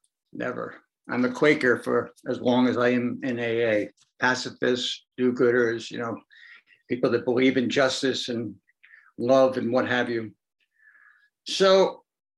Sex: male